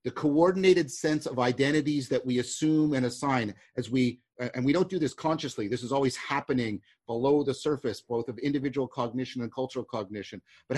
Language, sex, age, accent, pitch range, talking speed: English, male, 50-69, American, 120-150 Hz, 185 wpm